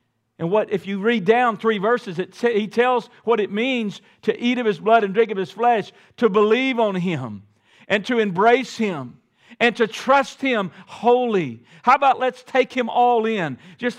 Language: English